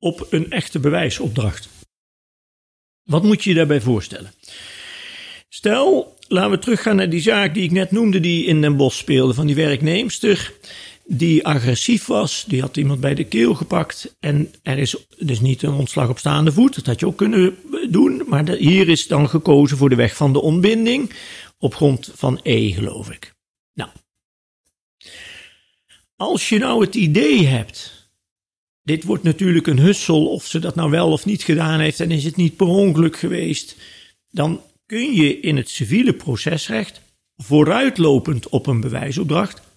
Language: Dutch